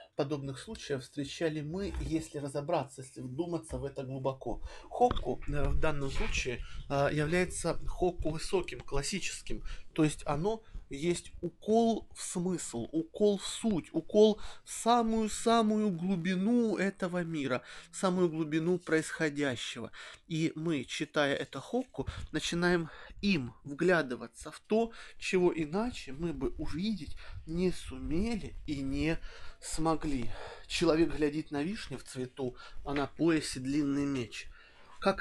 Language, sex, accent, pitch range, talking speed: Russian, male, native, 135-180 Hz, 120 wpm